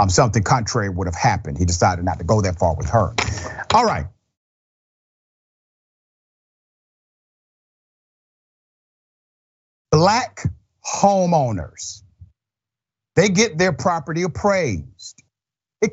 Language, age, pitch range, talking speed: English, 50-69, 105-155 Hz, 95 wpm